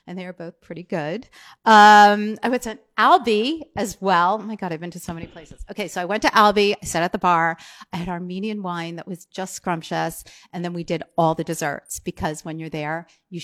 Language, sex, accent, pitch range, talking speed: English, female, American, 170-225 Hz, 235 wpm